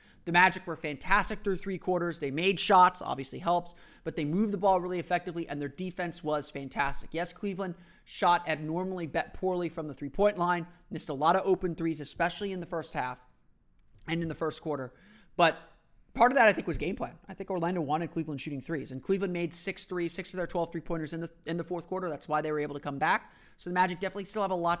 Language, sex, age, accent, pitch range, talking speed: English, male, 30-49, American, 155-185 Hz, 235 wpm